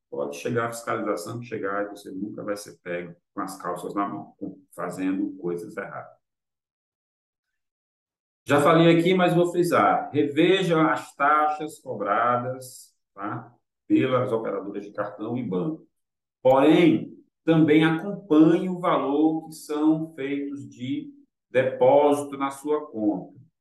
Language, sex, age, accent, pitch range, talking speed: Portuguese, male, 40-59, Brazilian, 105-155 Hz, 120 wpm